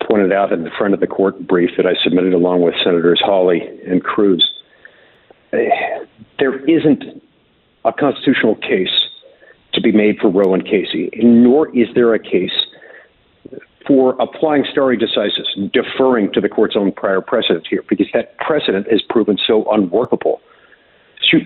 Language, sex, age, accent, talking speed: English, male, 50-69, American, 155 wpm